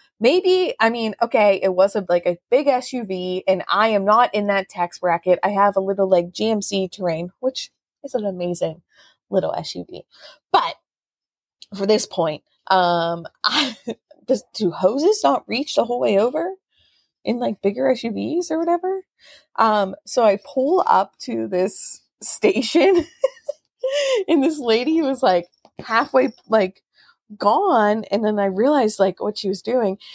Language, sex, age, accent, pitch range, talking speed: English, female, 20-39, American, 190-260 Hz, 155 wpm